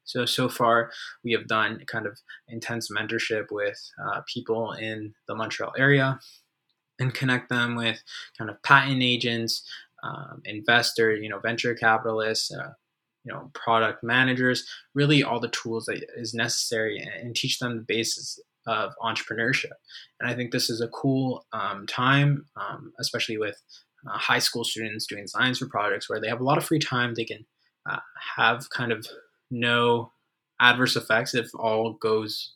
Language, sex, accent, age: English, male, American, 20-39